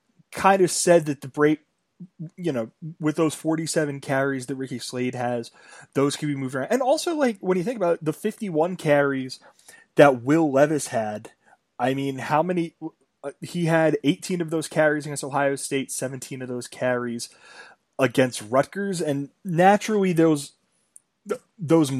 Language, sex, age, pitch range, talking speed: English, male, 20-39, 140-170 Hz, 160 wpm